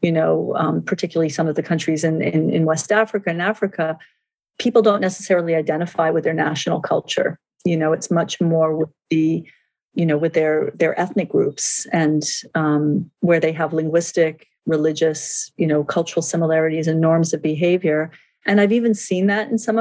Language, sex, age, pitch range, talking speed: English, female, 40-59, 160-185 Hz, 175 wpm